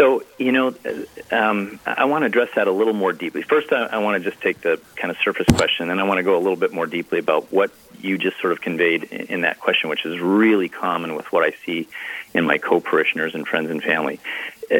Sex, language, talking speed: male, English, 250 wpm